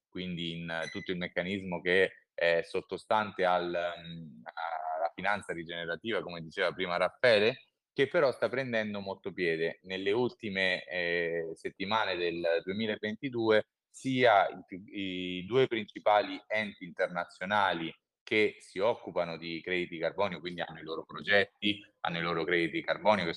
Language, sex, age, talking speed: Italian, male, 30-49, 130 wpm